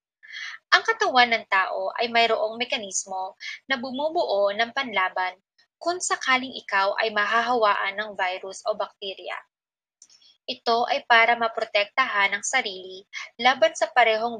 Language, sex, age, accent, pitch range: Japanese, female, 20-39, Filipino, 200-275 Hz